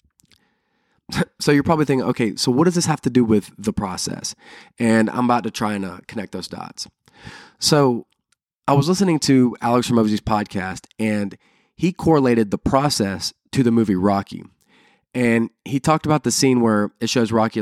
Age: 20-39